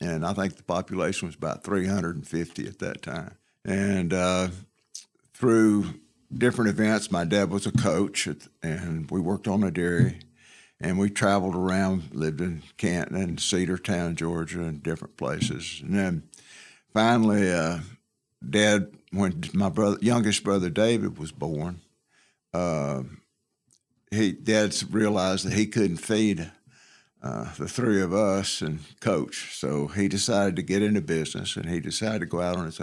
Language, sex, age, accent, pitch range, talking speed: English, male, 60-79, American, 85-105 Hz, 150 wpm